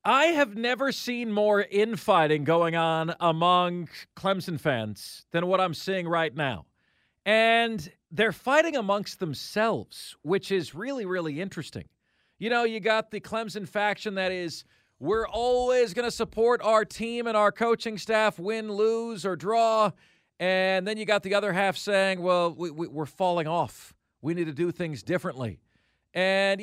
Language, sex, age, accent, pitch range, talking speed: English, male, 40-59, American, 165-210 Hz, 160 wpm